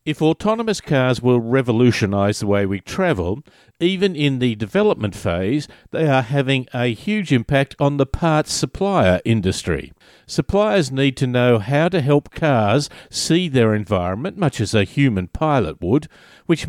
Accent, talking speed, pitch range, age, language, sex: Australian, 155 wpm, 115-155 Hz, 50-69, English, male